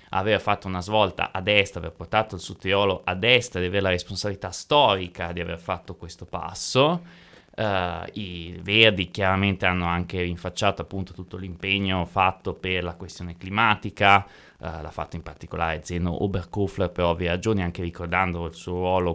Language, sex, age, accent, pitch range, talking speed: Italian, male, 20-39, native, 90-100 Hz, 160 wpm